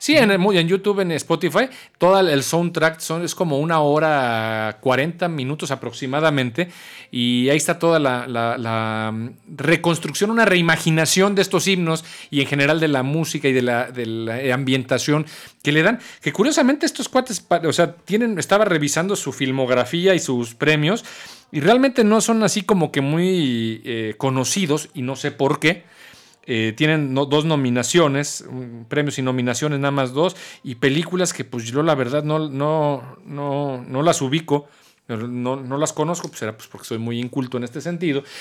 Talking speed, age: 175 wpm, 40-59